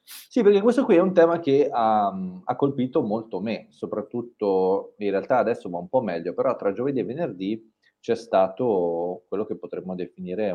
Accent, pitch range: native, 90-140 Hz